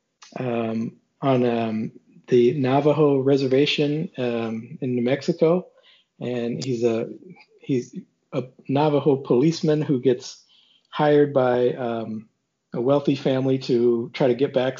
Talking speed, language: 120 wpm, English